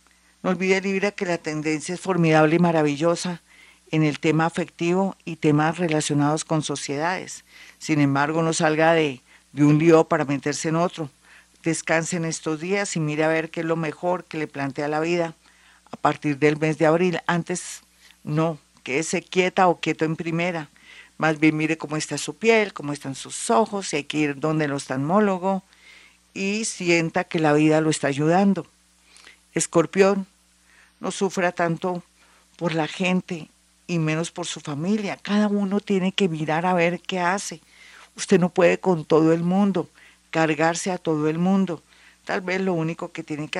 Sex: female